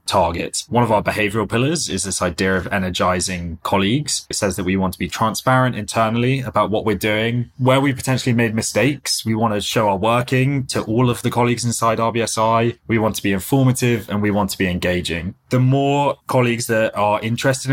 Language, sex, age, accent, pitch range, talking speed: English, male, 20-39, British, 100-120 Hz, 205 wpm